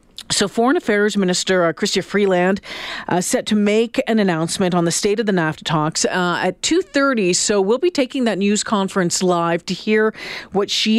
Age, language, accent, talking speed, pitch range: 40-59, English, American, 190 wpm, 175-215 Hz